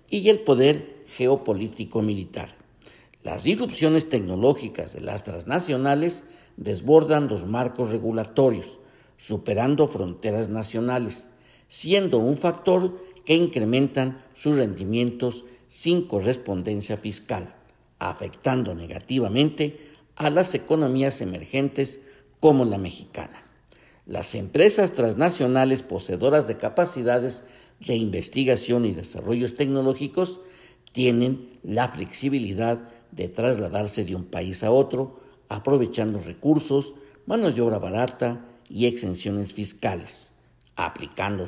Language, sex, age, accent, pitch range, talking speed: Spanish, male, 50-69, Mexican, 105-140 Hz, 95 wpm